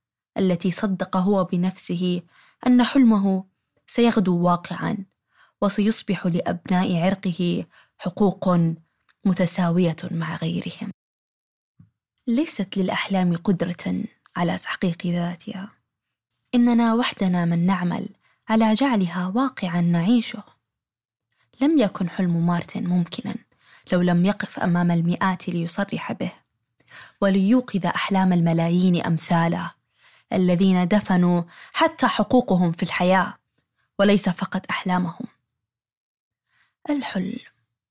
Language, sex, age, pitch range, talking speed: Arabic, female, 20-39, 175-215 Hz, 85 wpm